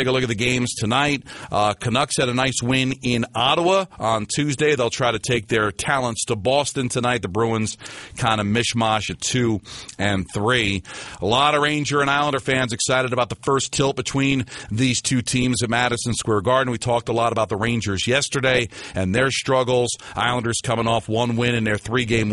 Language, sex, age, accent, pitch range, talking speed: English, male, 40-59, American, 105-130 Hz, 200 wpm